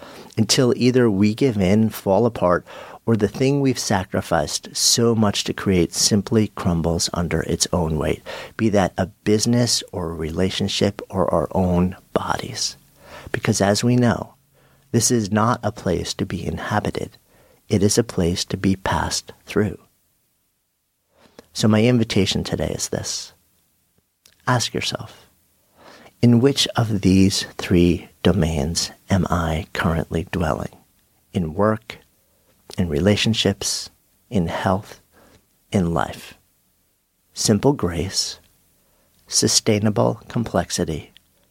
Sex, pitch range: male, 90-115 Hz